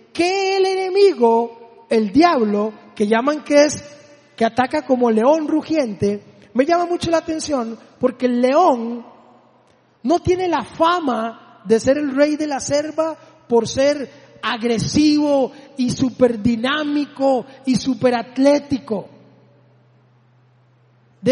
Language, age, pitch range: Spanish, 30-49, 230-305 Hz